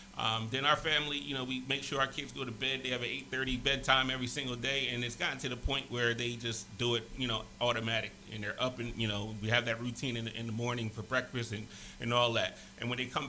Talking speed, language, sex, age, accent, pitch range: 275 wpm, English, male, 30-49, American, 115-155 Hz